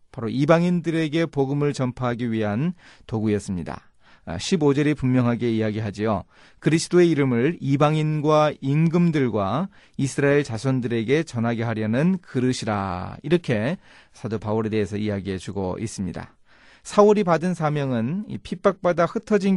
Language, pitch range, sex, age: Korean, 115-175 Hz, male, 40-59